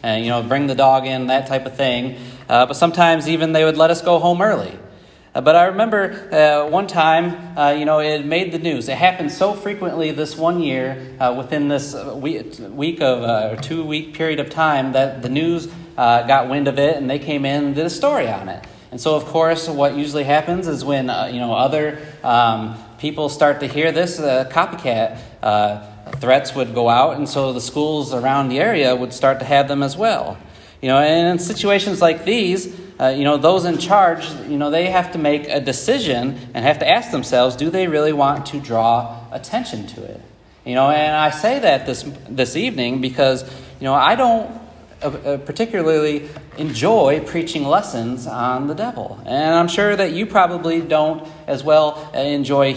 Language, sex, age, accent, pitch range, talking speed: English, male, 30-49, American, 130-165 Hz, 200 wpm